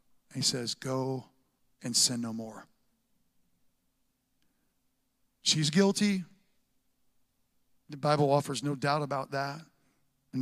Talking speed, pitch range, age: 105 wpm, 140-185 Hz, 40-59